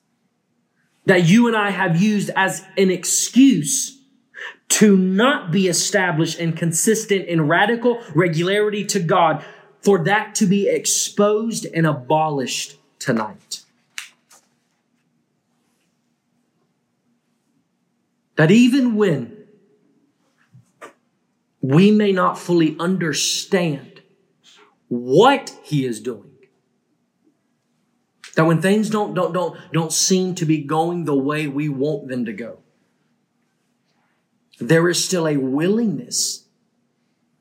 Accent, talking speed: American, 100 wpm